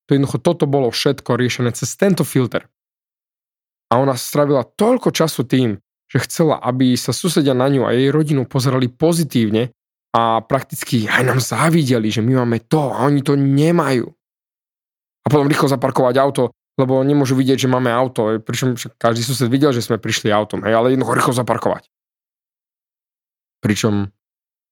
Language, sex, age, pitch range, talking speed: Slovak, male, 20-39, 120-150 Hz, 155 wpm